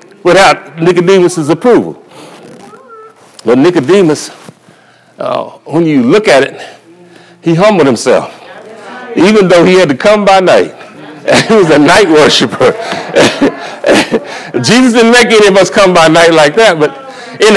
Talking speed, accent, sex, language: 135 wpm, American, male, English